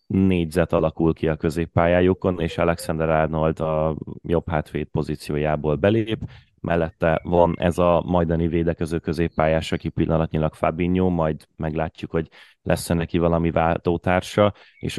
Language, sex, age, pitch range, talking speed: Hungarian, male, 30-49, 80-90 Hz, 125 wpm